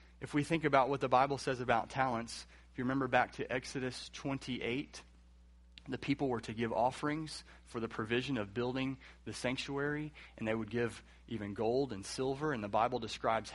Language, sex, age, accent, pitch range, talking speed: English, male, 30-49, American, 105-135 Hz, 185 wpm